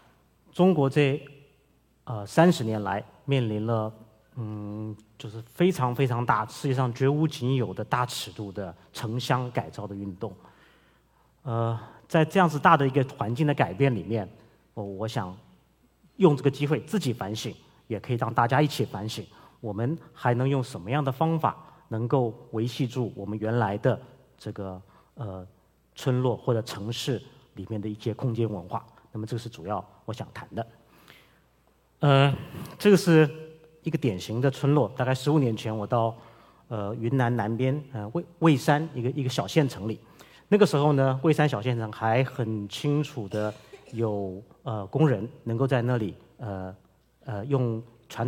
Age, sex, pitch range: 30-49, male, 110-140 Hz